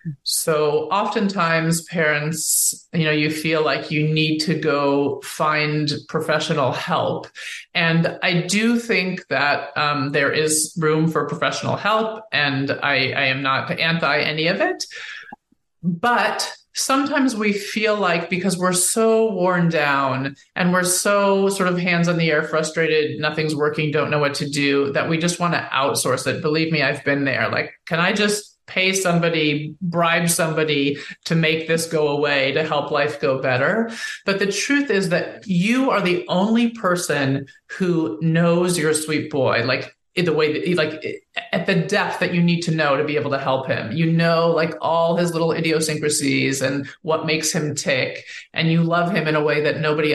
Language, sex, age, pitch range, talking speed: English, male, 30-49, 150-180 Hz, 180 wpm